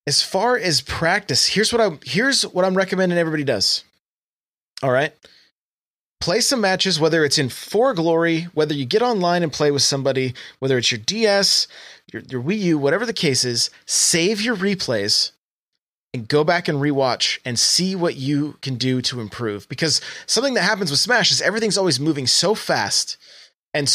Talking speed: 180 wpm